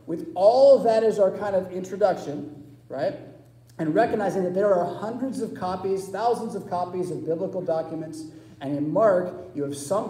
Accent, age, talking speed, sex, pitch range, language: American, 40-59, 180 wpm, male, 145-220 Hz, English